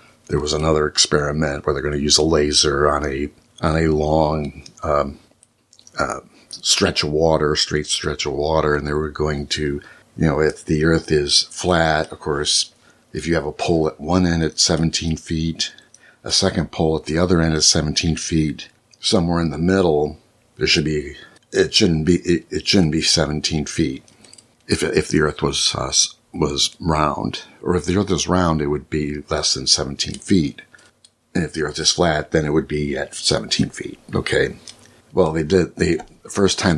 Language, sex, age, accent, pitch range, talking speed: English, male, 60-79, American, 75-85 Hz, 190 wpm